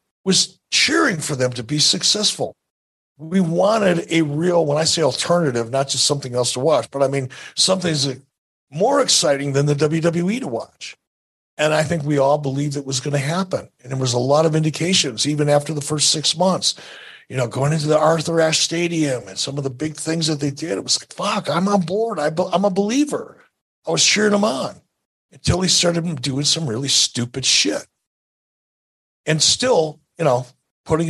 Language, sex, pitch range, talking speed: English, male, 135-175 Hz, 200 wpm